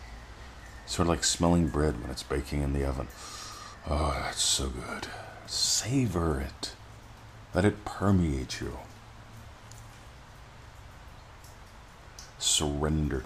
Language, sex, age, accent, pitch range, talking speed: English, male, 50-69, American, 75-100 Hz, 100 wpm